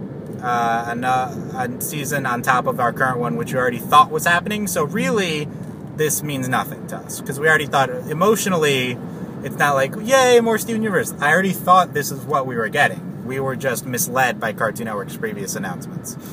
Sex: male